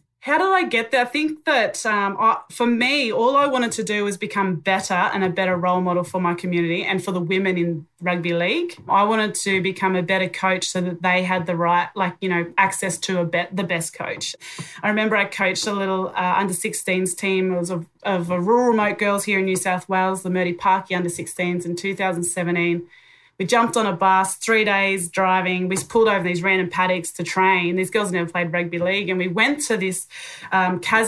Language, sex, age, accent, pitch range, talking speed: English, female, 20-39, Australian, 180-210 Hz, 225 wpm